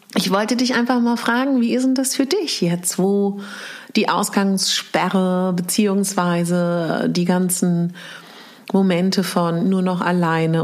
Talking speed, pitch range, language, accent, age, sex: 135 wpm, 170-220 Hz, German, German, 40-59, female